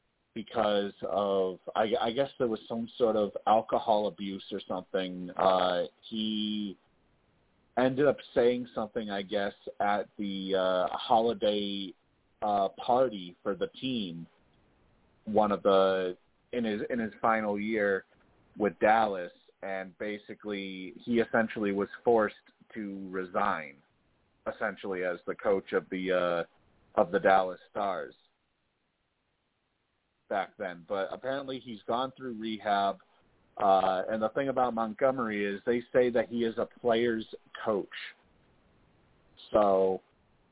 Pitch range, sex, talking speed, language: 95-115 Hz, male, 125 wpm, English